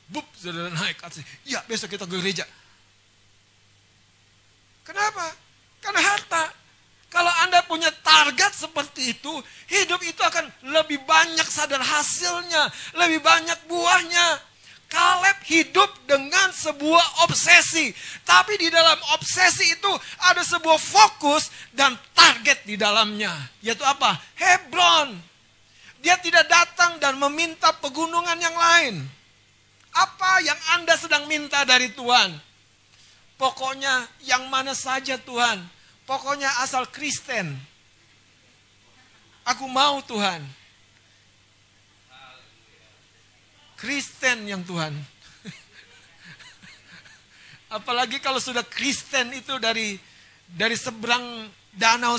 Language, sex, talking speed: Indonesian, male, 95 wpm